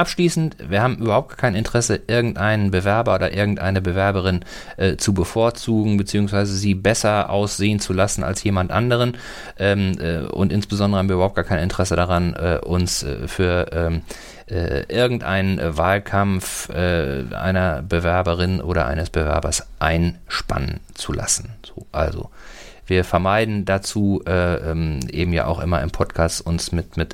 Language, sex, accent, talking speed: German, male, German, 145 wpm